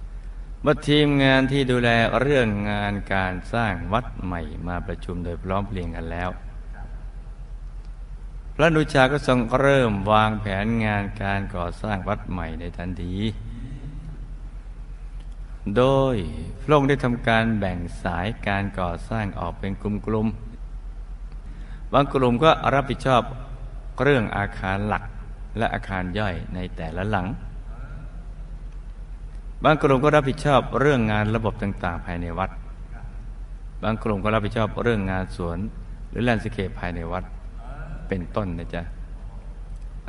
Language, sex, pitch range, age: Thai, male, 95-120 Hz, 60-79